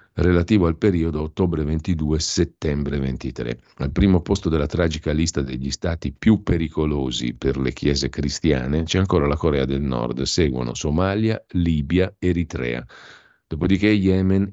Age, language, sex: 50-69, Italian, male